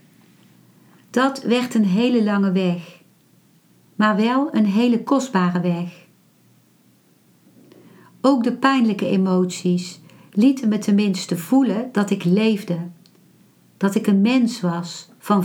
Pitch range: 185-235 Hz